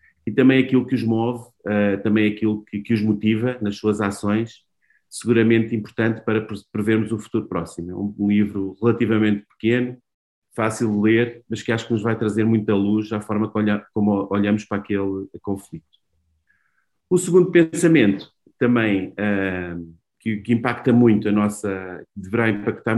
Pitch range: 105-120 Hz